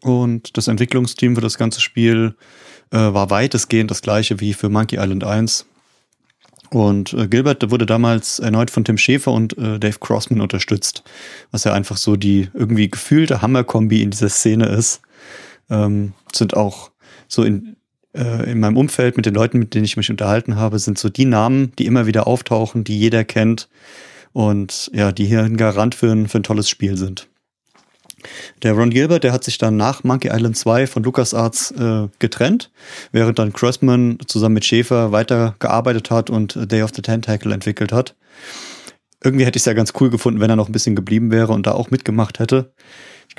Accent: German